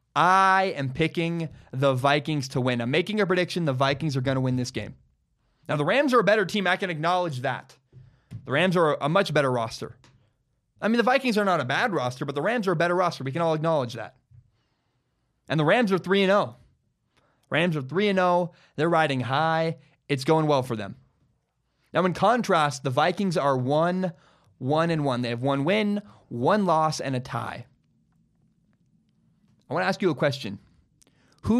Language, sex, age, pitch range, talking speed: English, male, 20-39, 130-185 Hz, 200 wpm